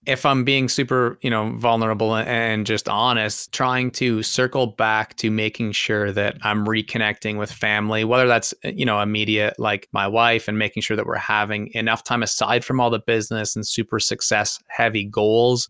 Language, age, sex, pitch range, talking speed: English, 20-39, male, 105-120 Hz, 185 wpm